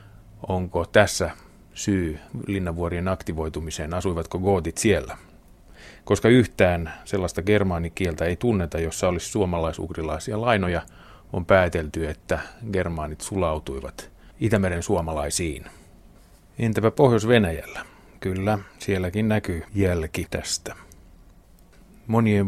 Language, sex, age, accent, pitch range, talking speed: Finnish, male, 30-49, native, 85-105 Hz, 90 wpm